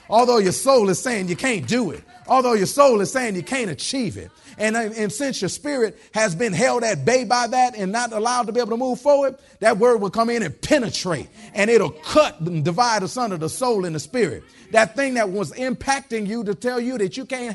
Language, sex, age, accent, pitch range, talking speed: English, male, 40-59, American, 200-265 Hz, 240 wpm